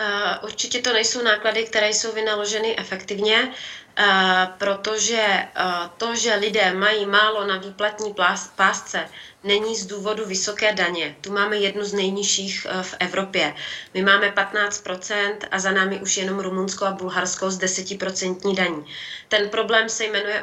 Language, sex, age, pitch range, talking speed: Czech, female, 30-49, 185-215 Hz, 140 wpm